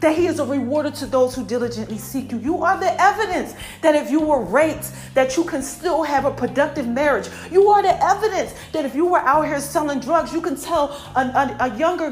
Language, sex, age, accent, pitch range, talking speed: English, female, 40-59, American, 255-340 Hz, 230 wpm